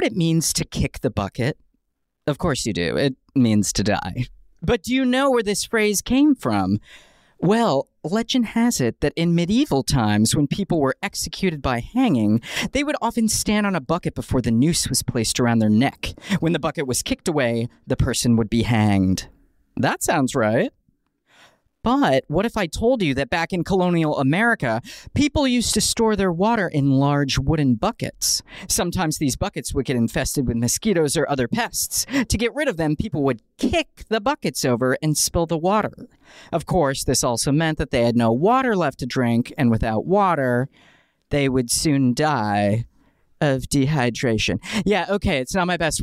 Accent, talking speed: American, 185 wpm